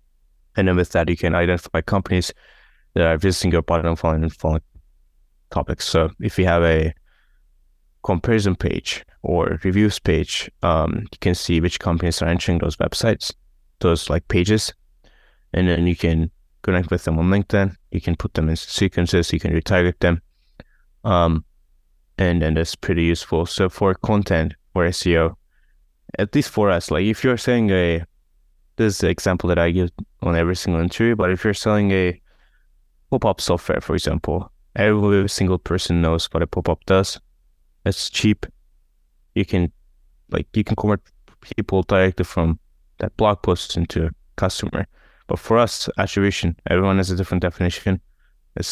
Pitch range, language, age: 80-95 Hz, English, 20-39